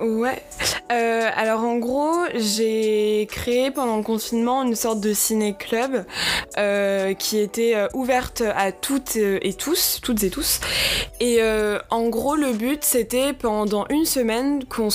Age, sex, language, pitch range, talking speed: 20-39, female, French, 215-260 Hz, 155 wpm